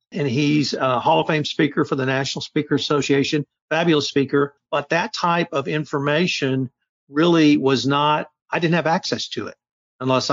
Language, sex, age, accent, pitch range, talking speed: English, male, 50-69, American, 130-155 Hz, 170 wpm